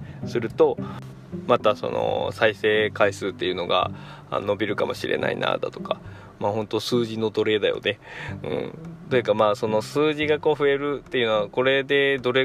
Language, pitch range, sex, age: Japanese, 105-140 Hz, male, 20-39